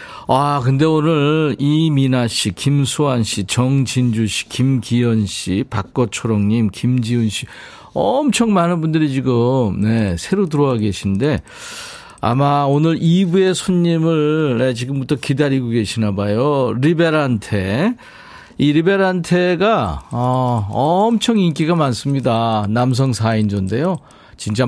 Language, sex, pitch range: Korean, male, 110-160 Hz